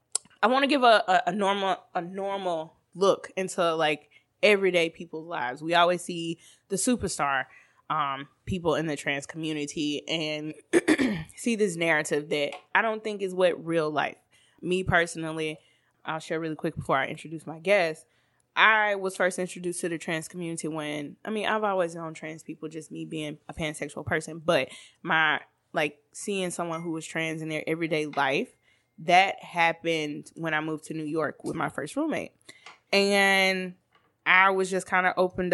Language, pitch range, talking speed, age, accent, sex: English, 160-195 Hz, 170 wpm, 20-39, American, female